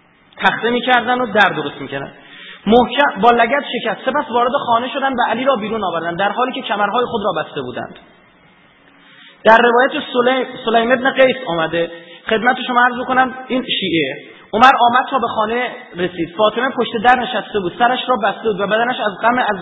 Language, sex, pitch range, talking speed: Persian, male, 215-255 Hz, 185 wpm